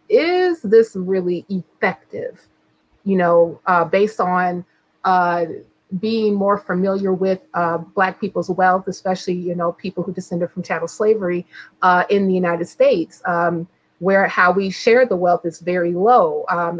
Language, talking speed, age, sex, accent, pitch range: English, 155 wpm, 30-49, female, American, 170-200 Hz